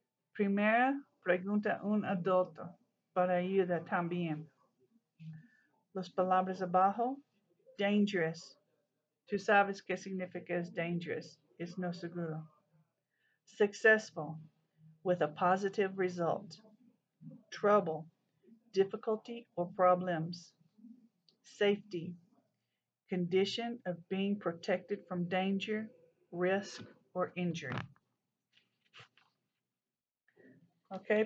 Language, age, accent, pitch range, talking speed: English, 50-69, American, 180-225 Hz, 75 wpm